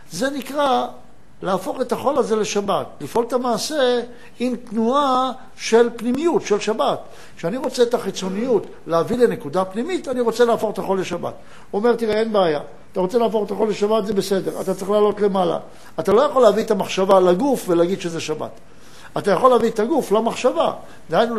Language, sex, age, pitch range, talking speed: Hebrew, male, 60-79, 185-235 Hz, 175 wpm